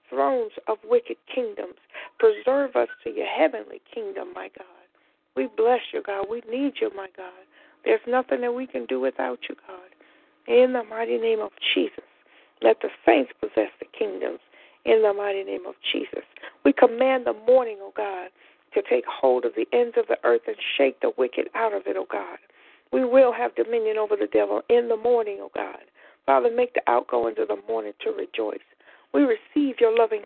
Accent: American